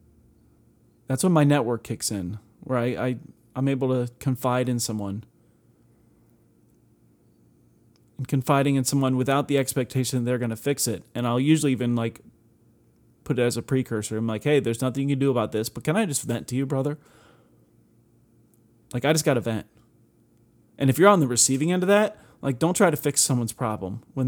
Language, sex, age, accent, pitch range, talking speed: English, male, 30-49, American, 115-140 Hz, 195 wpm